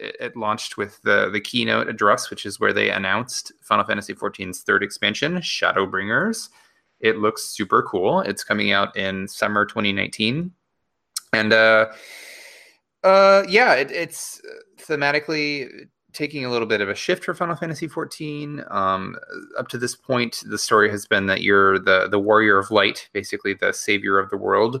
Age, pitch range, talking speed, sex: 20-39, 105-145 Hz, 165 wpm, male